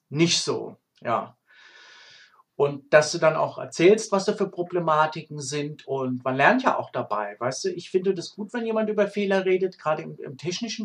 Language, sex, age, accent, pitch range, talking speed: German, male, 50-69, German, 140-200 Hz, 195 wpm